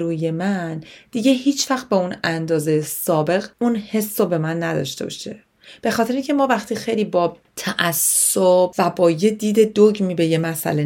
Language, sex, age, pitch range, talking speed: Persian, female, 30-49, 160-215 Hz, 165 wpm